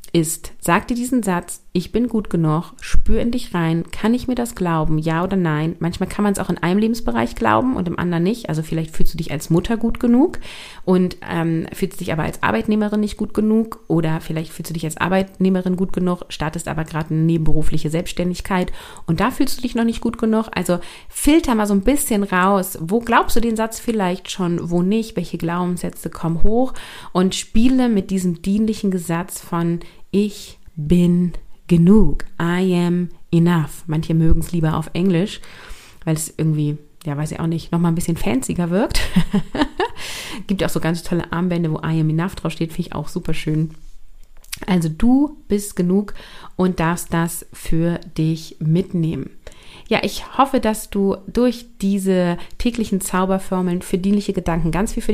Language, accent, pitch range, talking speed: German, German, 165-205 Hz, 185 wpm